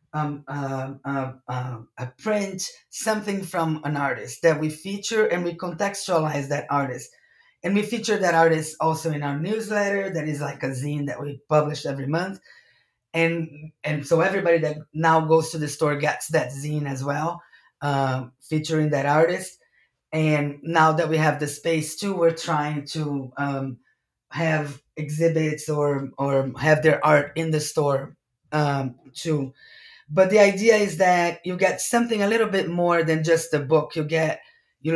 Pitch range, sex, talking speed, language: 145-170 Hz, female, 170 wpm, English